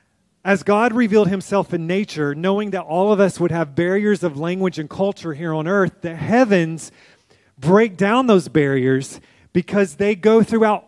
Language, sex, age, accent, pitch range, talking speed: English, male, 30-49, American, 160-195 Hz, 170 wpm